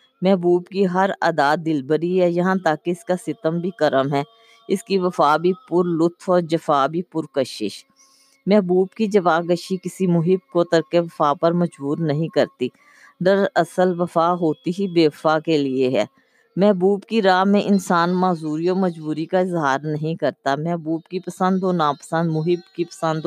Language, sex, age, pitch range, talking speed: Urdu, female, 20-39, 160-195 Hz, 175 wpm